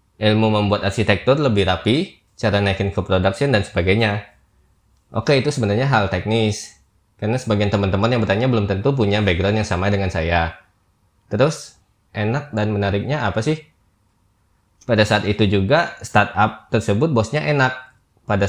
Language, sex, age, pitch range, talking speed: Indonesian, male, 20-39, 95-115 Hz, 145 wpm